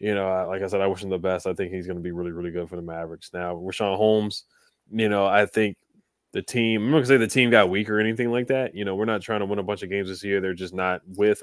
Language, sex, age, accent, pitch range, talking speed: English, male, 20-39, American, 95-110 Hz, 320 wpm